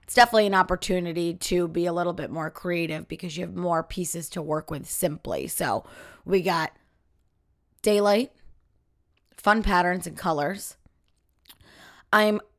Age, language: 20-39, English